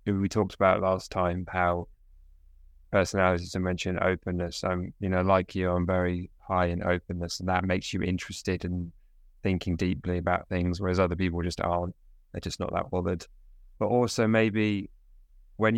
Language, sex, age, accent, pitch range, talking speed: English, male, 20-39, British, 85-95 Hz, 165 wpm